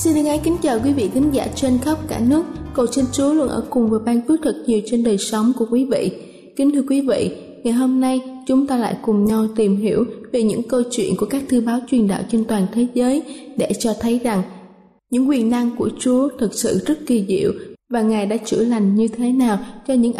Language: Vietnamese